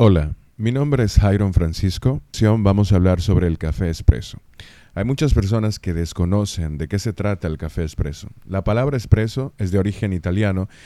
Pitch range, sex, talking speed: 90-110 Hz, male, 180 wpm